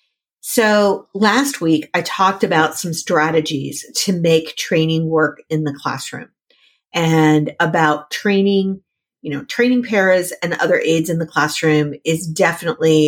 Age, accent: 50-69, American